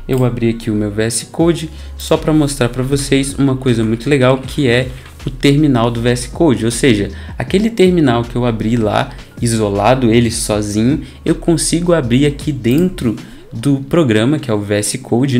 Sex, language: male, Portuguese